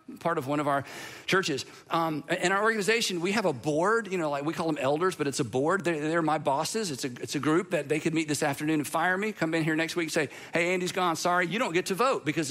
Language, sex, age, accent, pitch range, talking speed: English, male, 50-69, American, 160-210 Hz, 290 wpm